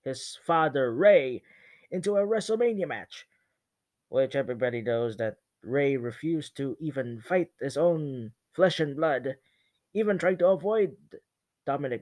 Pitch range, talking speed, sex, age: 145-190 Hz, 130 wpm, male, 20-39